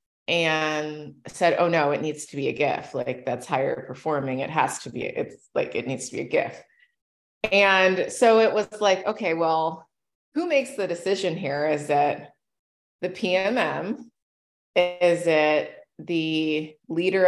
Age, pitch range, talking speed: 20-39, 155-195 Hz, 160 wpm